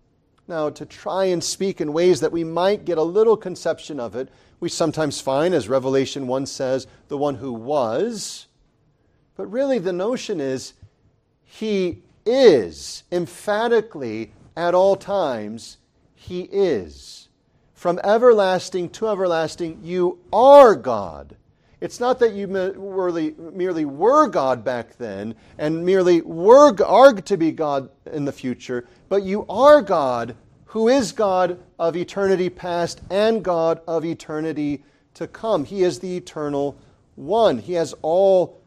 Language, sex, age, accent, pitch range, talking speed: English, male, 40-59, American, 140-195 Hz, 140 wpm